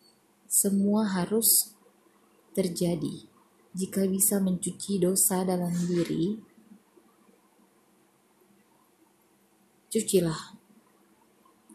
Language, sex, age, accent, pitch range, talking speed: Indonesian, female, 20-39, native, 180-215 Hz, 50 wpm